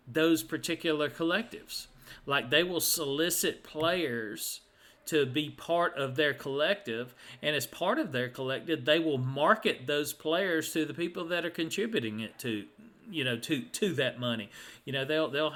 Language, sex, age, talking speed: English, male, 40-59, 165 wpm